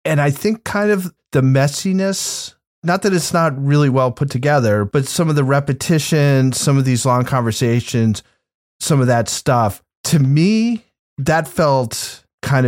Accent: American